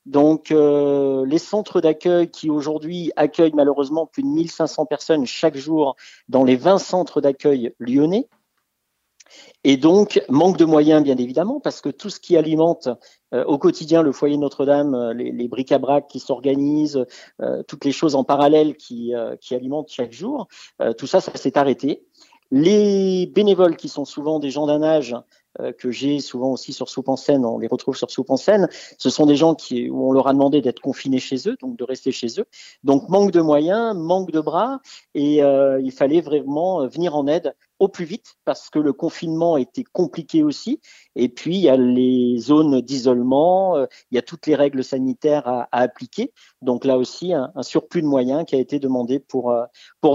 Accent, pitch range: French, 135-170 Hz